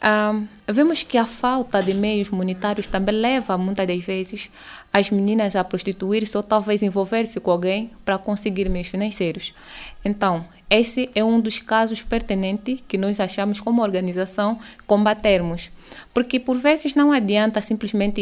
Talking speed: 150 wpm